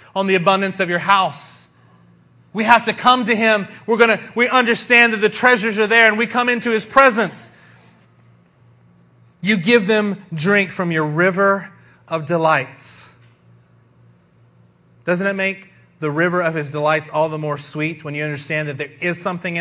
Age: 30-49